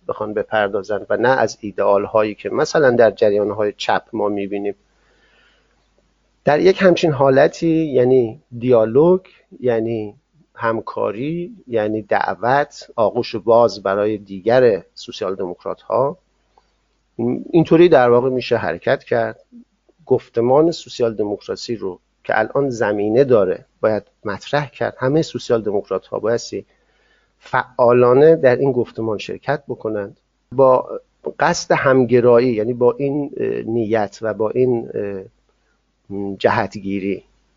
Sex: male